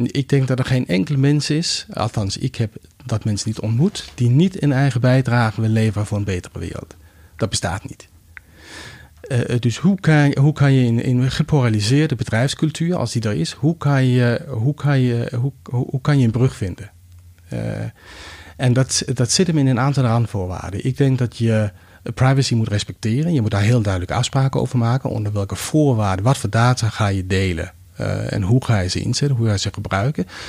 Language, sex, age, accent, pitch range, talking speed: Dutch, male, 40-59, Dutch, 100-135 Hz, 205 wpm